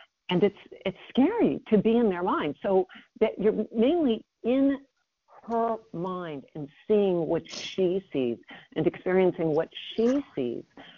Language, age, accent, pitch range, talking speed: English, 50-69, American, 145-200 Hz, 140 wpm